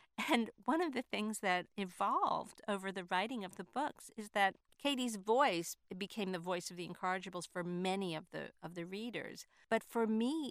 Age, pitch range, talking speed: 50-69, 185-235 Hz, 190 wpm